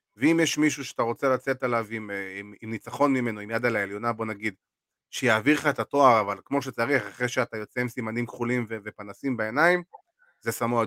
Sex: male